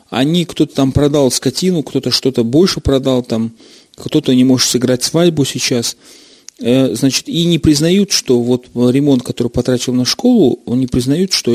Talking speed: 160 wpm